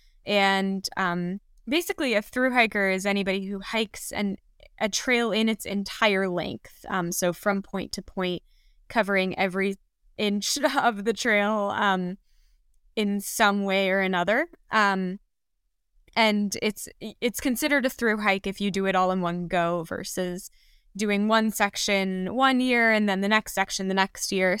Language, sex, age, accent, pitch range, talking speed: English, female, 20-39, American, 195-240 Hz, 160 wpm